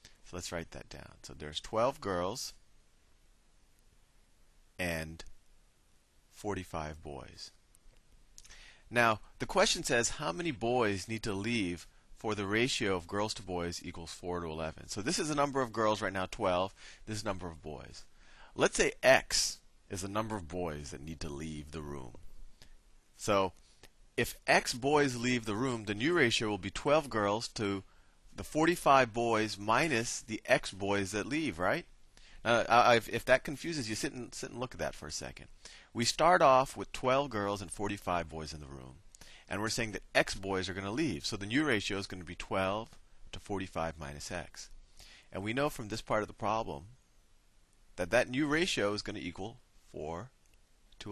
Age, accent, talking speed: 40-59, American, 180 wpm